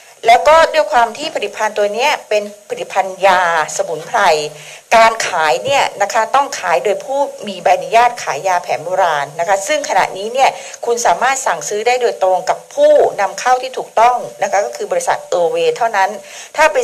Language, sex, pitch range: Thai, female, 190-275 Hz